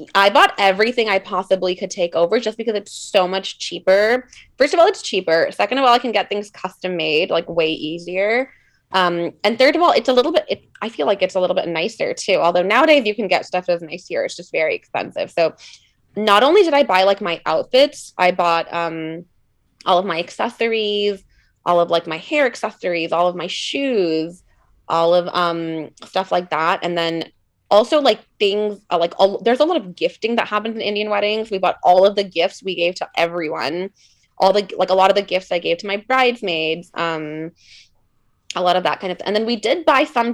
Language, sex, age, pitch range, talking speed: English, female, 20-39, 170-215 Hz, 215 wpm